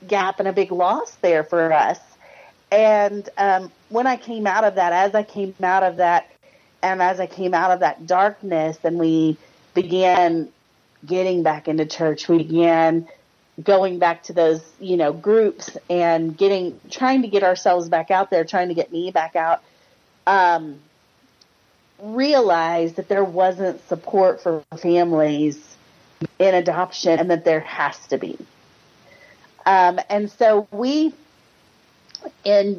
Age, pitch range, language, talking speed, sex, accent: 40-59, 165-200 Hz, English, 150 wpm, female, American